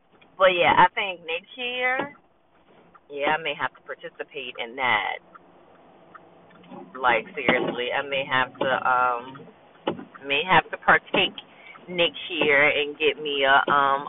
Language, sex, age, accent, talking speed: English, female, 30-49, American, 135 wpm